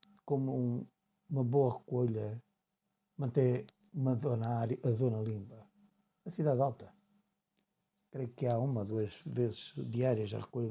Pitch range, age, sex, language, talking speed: 120-200 Hz, 60-79, male, Portuguese, 120 wpm